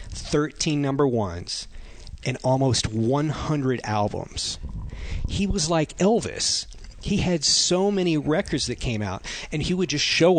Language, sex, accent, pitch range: English, male, American, 110-140 Hz